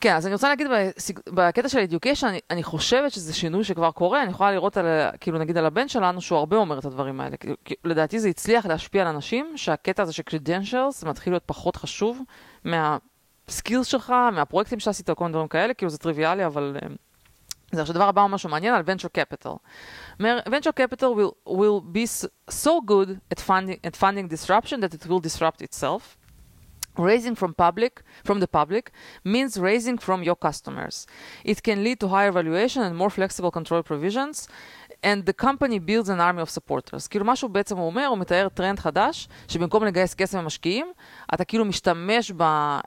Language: Hebrew